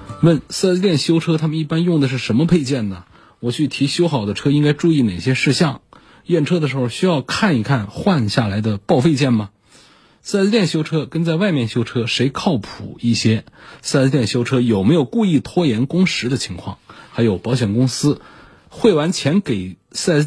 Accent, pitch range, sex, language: native, 100-140 Hz, male, Chinese